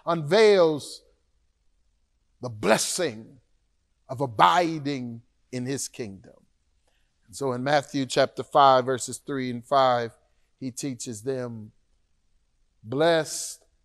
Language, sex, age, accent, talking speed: English, male, 40-59, American, 90 wpm